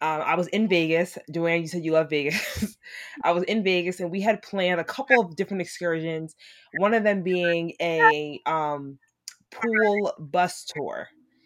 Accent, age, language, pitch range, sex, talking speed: American, 20-39, English, 165-195 Hz, female, 175 wpm